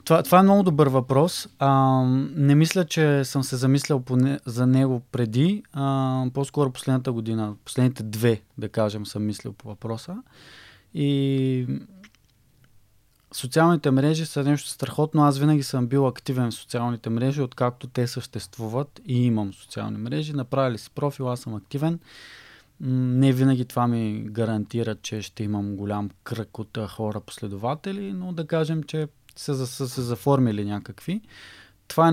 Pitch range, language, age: 115-145 Hz, Bulgarian, 20-39